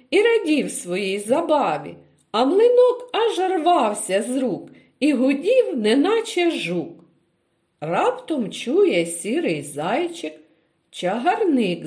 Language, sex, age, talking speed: Ukrainian, female, 50-69, 95 wpm